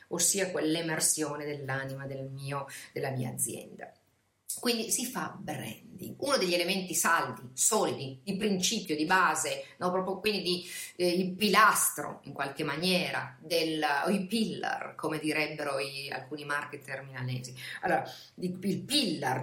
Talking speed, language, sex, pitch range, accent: 135 wpm, Italian, female, 155-205 Hz, native